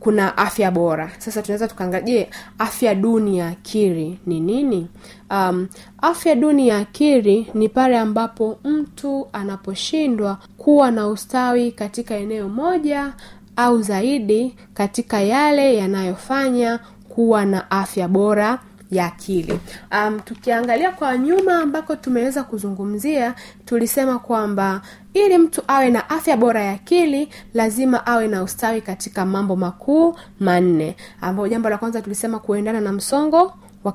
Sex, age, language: female, 20-39, Swahili